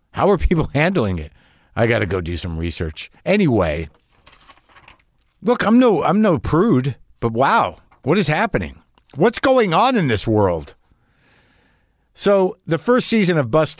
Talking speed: 155 wpm